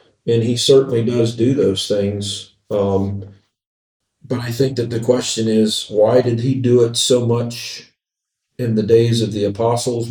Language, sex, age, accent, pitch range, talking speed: English, male, 40-59, American, 100-120 Hz, 165 wpm